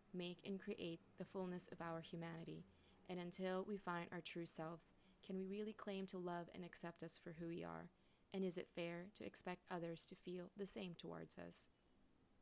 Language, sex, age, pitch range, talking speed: English, female, 20-39, 165-195 Hz, 200 wpm